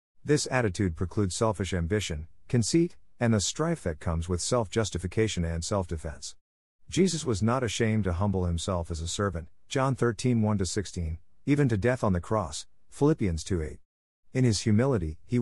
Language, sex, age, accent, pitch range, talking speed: English, male, 50-69, American, 90-120 Hz, 160 wpm